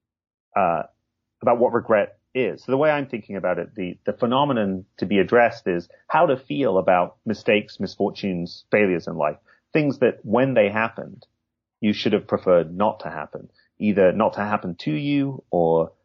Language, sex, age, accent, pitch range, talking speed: English, male, 30-49, British, 95-125 Hz, 175 wpm